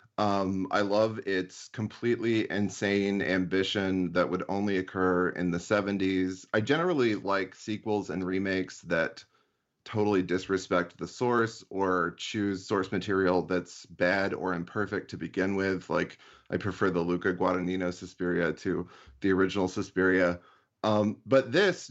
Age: 30-49